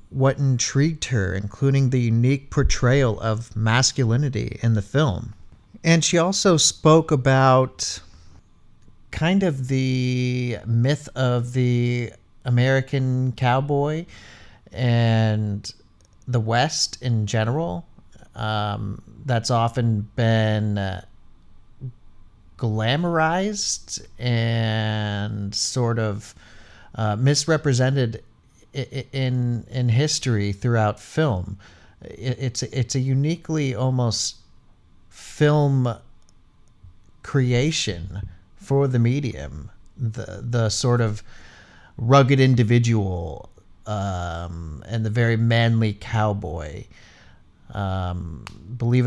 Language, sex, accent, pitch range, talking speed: English, male, American, 100-130 Hz, 85 wpm